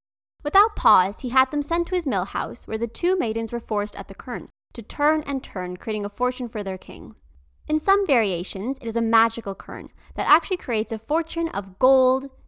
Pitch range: 200-285 Hz